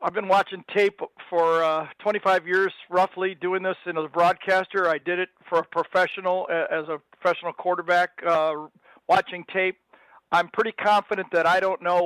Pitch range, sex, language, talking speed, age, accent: 170-195 Hz, male, English, 170 wpm, 50-69, American